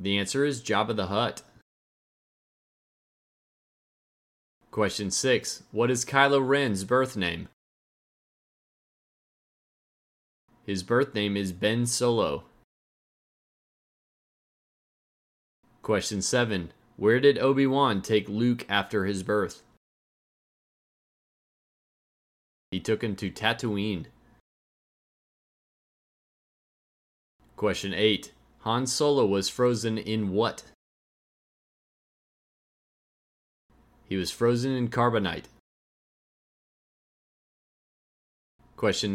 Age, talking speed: 20-39, 75 wpm